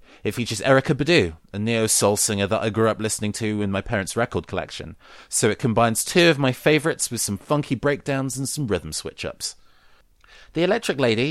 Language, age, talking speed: English, 30-49, 190 wpm